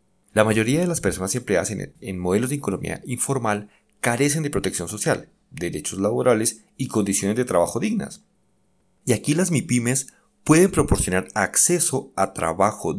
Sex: male